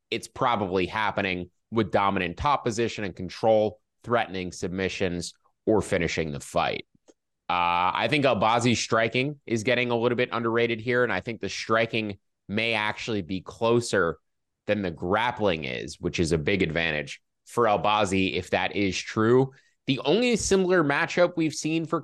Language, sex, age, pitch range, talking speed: English, male, 20-39, 95-125 Hz, 160 wpm